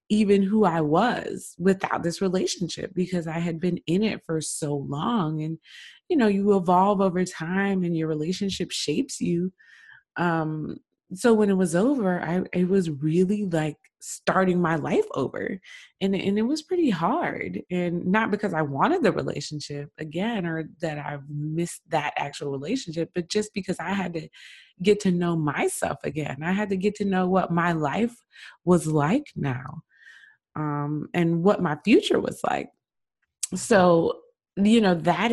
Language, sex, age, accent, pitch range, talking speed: English, female, 20-39, American, 160-195 Hz, 170 wpm